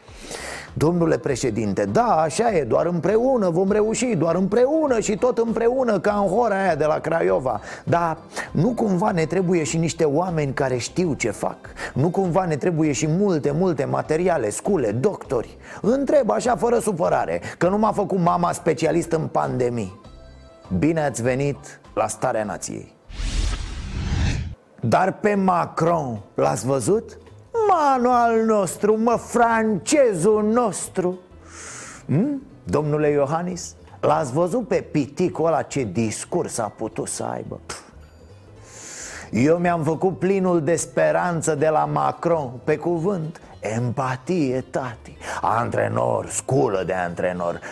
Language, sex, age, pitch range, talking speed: Romanian, male, 30-49, 135-200 Hz, 130 wpm